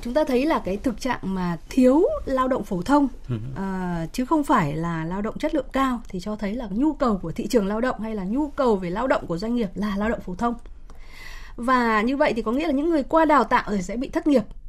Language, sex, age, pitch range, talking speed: Vietnamese, female, 20-39, 195-260 Hz, 260 wpm